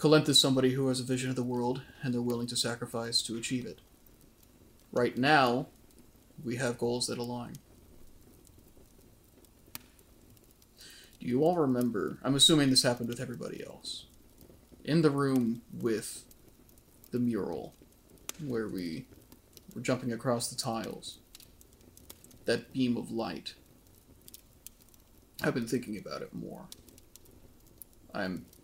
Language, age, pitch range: English, 30-49, 115-130 Hz